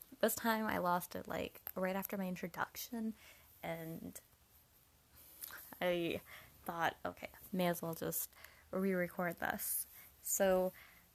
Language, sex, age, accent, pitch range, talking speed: English, female, 20-39, American, 180-215 Hz, 120 wpm